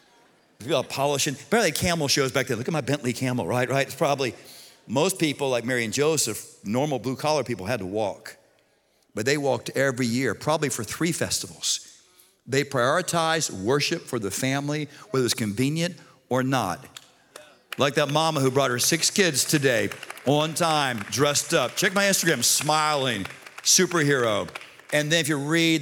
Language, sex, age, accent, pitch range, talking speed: English, male, 50-69, American, 125-155 Hz, 170 wpm